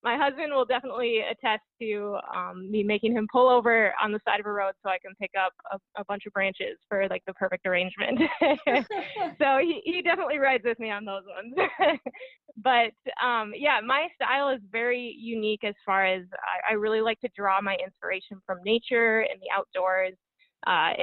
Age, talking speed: 20-39, 195 wpm